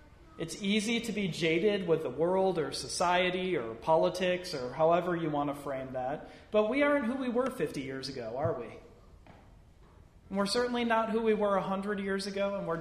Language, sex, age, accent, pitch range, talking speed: English, male, 40-59, American, 145-200 Hz, 195 wpm